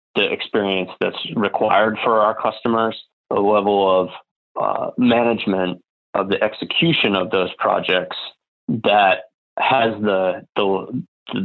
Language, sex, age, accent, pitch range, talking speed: English, male, 30-49, American, 95-110 Hz, 115 wpm